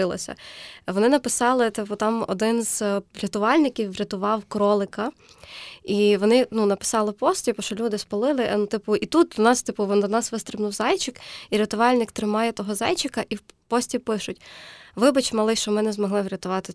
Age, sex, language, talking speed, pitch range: 20-39, female, Ukrainian, 135 wpm, 205-240 Hz